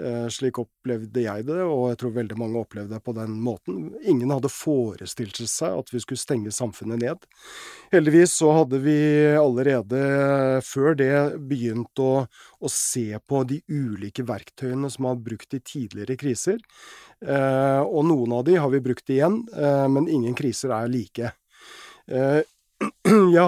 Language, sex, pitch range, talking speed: English, male, 120-140 Hz, 155 wpm